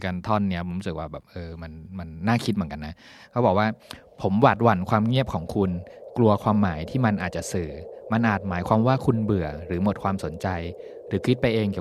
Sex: male